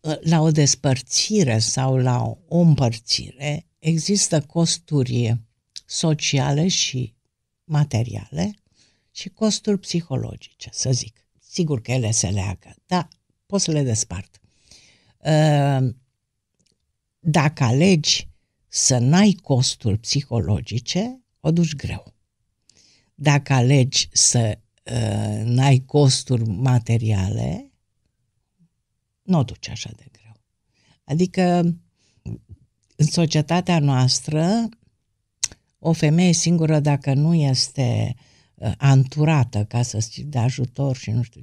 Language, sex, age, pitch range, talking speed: Romanian, female, 60-79, 120-170 Hz, 95 wpm